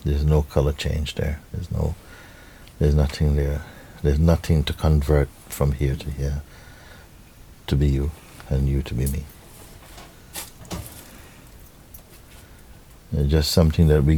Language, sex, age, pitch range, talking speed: English, male, 60-79, 75-90 Hz, 150 wpm